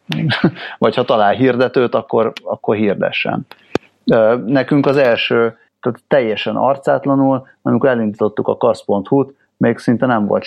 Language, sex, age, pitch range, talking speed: Hungarian, male, 30-49, 100-135 Hz, 120 wpm